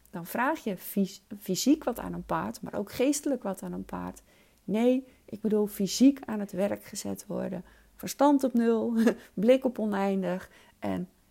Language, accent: Dutch, Dutch